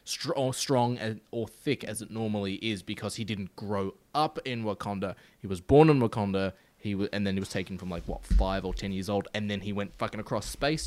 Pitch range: 100-125 Hz